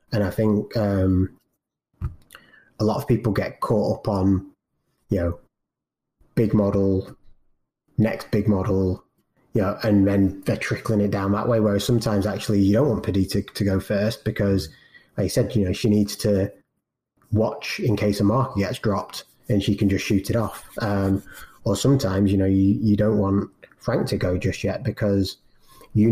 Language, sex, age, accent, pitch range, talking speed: English, male, 20-39, British, 95-110 Hz, 180 wpm